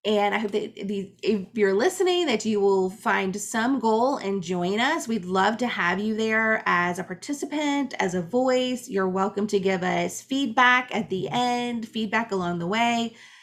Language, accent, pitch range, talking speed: English, American, 200-255 Hz, 185 wpm